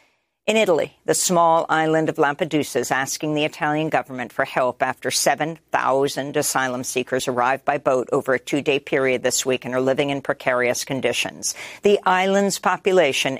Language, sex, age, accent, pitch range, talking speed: English, female, 50-69, American, 140-170 Hz, 160 wpm